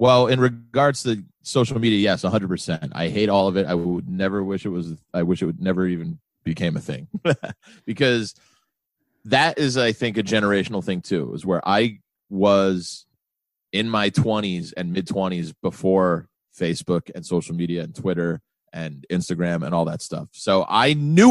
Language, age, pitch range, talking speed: English, 30-49, 100-150 Hz, 185 wpm